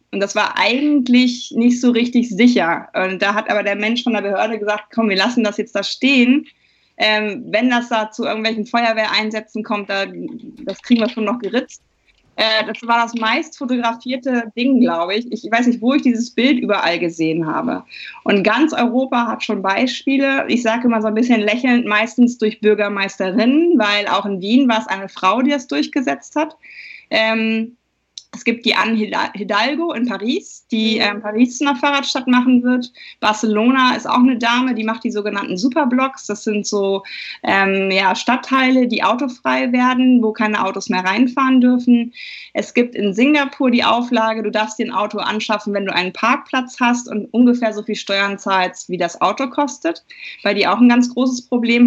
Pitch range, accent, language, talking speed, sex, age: 210-255 Hz, German, German, 185 wpm, female, 20-39